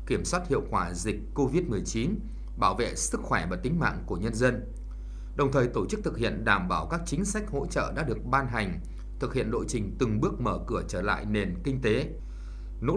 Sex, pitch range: male, 100-155 Hz